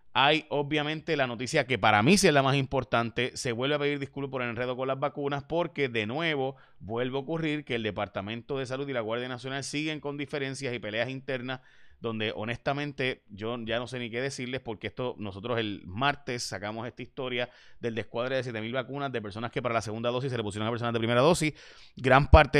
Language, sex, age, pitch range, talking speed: Spanish, male, 30-49, 115-145 Hz, 220 wpm